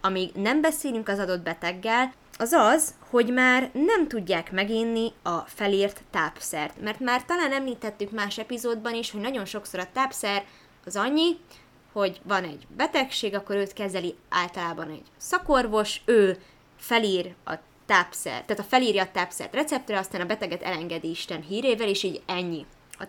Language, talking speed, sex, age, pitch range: Hungarian, 155 wpm, female, 20-39, 185-240 Hz